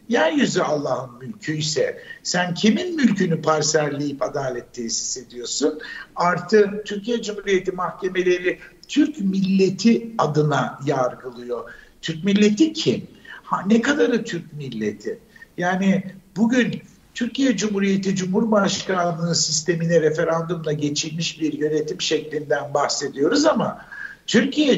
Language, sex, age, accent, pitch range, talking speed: Turkish, male, 60-79, native, 165-225 Hz, 100 wpm